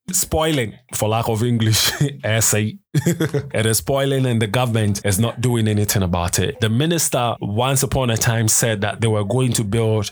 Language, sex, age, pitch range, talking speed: English, male, 20-39, 115-140 Hz, 185 wpm